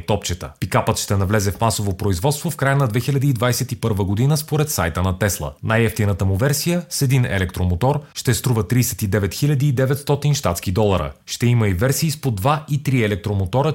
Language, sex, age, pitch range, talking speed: Bulgarian, male, 30-49, 105-135 Hz, 165 wpm